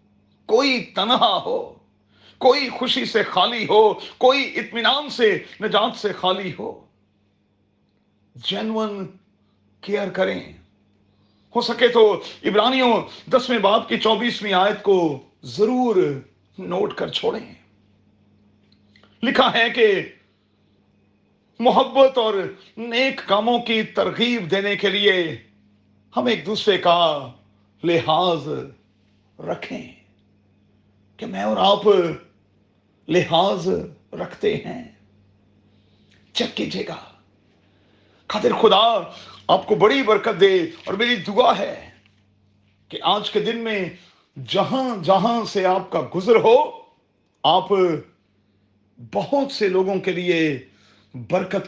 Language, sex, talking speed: Urdu, male, 105 wpm